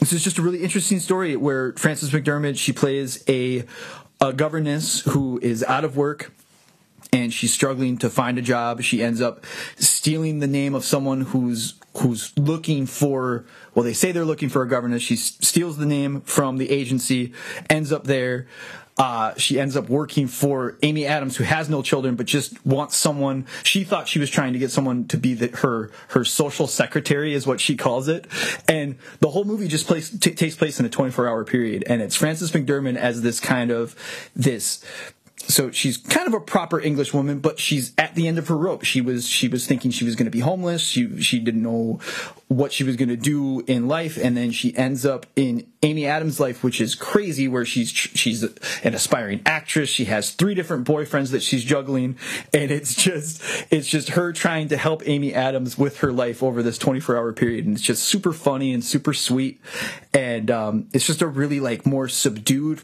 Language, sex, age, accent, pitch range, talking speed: English, male, 30-49, American, 125-155 Hz, 210 wpm